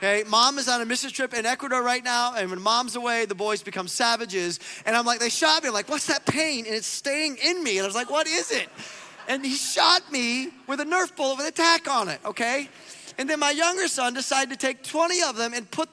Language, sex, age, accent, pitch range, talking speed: English, male, 30-49, American, 230-300 Hz, 260 wpm